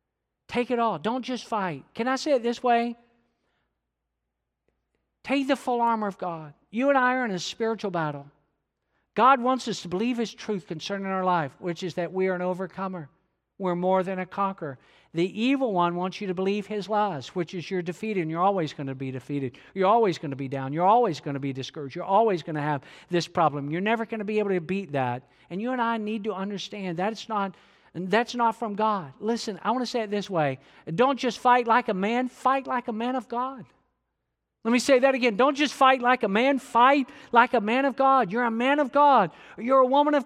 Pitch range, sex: 180-255 Hz, male